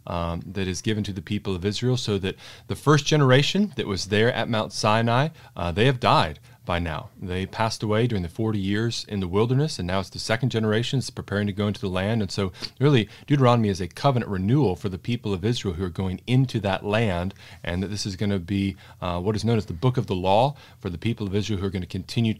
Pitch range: 100-125 Hz